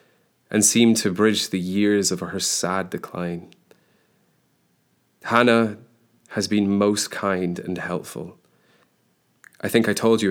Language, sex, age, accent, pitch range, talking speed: English, male, 30-49, British, 90-105 Hz, 130 wpm